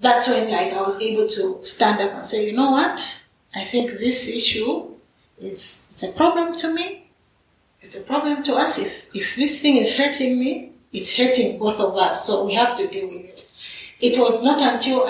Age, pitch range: 30-49, 195-260 Hz